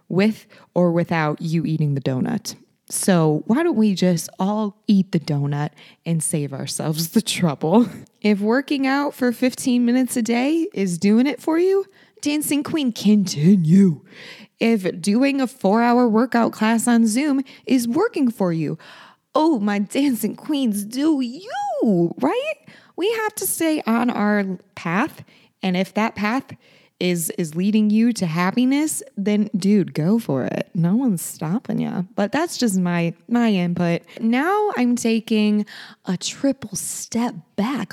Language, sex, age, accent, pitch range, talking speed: English, female, 20-39, American, 180-245 Hz, 150 wpm